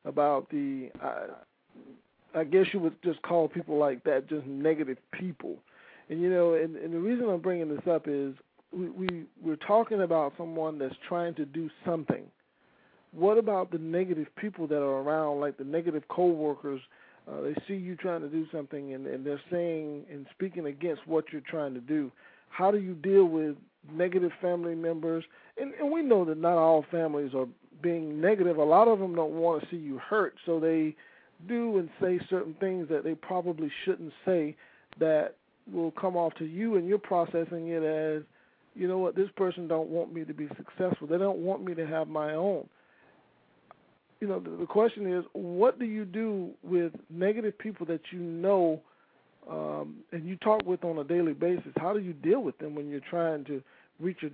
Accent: American